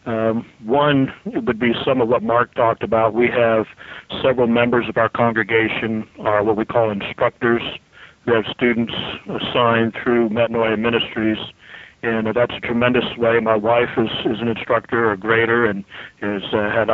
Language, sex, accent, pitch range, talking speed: English, male, American, 110-125 Hz, 165 wpm